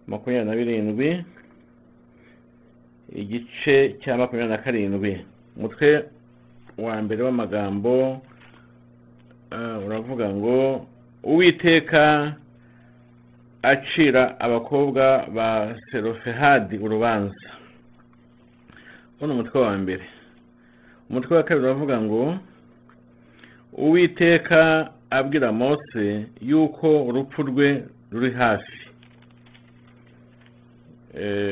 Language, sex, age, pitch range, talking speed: English, male, 50-69, 100-135 Hz, 75 wpm